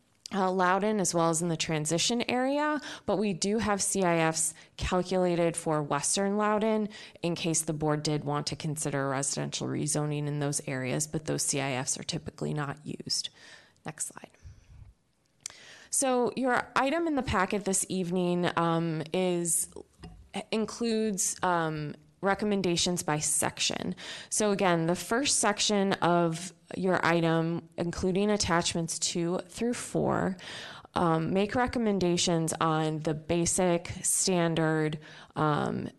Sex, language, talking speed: female, English, 125 wpm